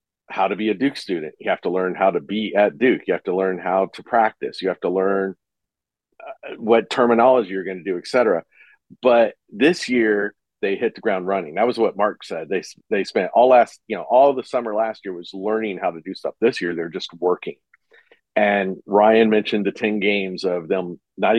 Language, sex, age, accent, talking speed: English, male, 40-59, American, 225 wpm